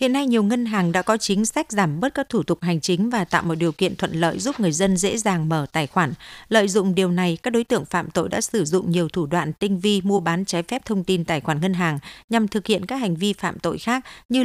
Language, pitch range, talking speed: Vietnamese, 175-225 Hz, 285 wpm